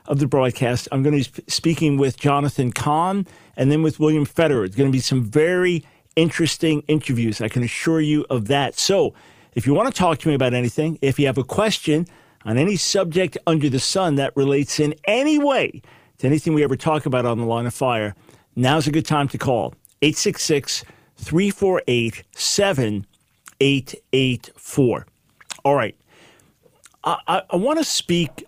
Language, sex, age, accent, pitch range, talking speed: English, male, 50-69, American, 130-155 Hz, 175 wpm